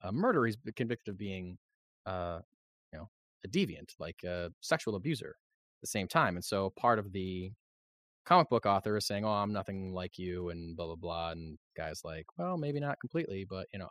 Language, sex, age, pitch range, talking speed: English, male, 20-39, 95-135 Hz, 205 wpm